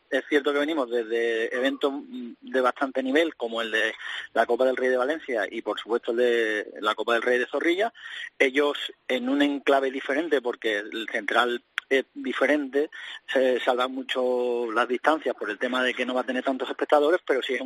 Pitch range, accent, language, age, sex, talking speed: 125-150 Hz, Spanish, Spanish, 30-49, male, 195 wpm